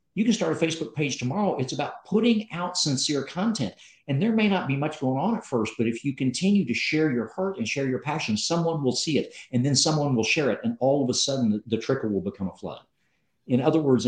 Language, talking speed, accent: English, 255 wpm, American